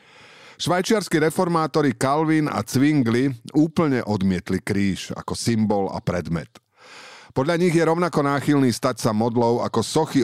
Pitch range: 95-125 Hz